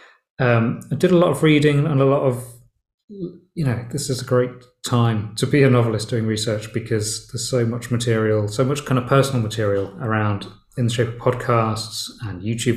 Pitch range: 110-125 Hz